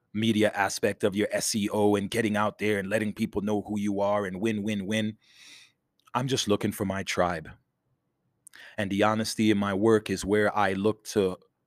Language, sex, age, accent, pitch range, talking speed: English, male, 30-49, American, 95-110 Hz, 190 wpm